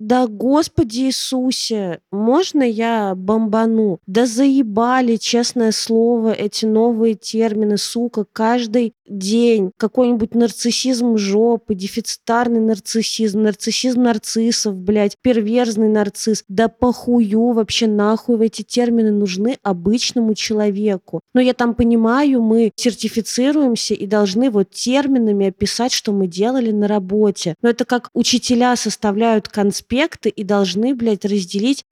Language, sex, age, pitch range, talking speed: Russian, female, 20-39, 200-235 Hz, 115 wpm